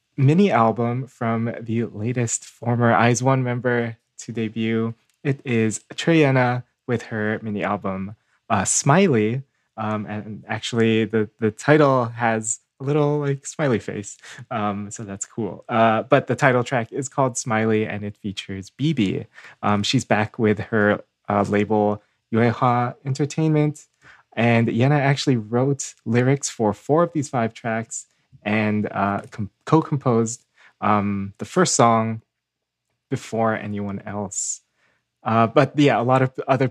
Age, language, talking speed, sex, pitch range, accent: 20-39, English, 140 wpm, male, 110-135 Hz, American